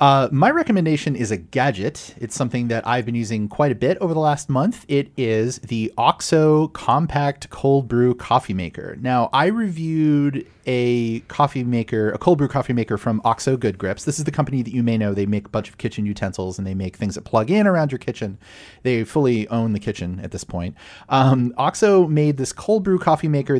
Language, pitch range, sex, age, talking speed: English, 105-145 Hz, male, 30-49, 215 wpm